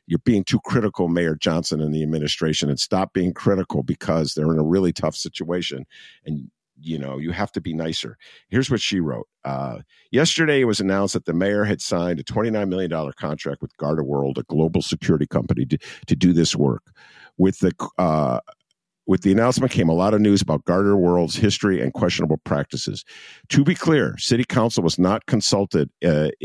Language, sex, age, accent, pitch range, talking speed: English, male, 50-69, American, 80-135 Hz, 190 wpm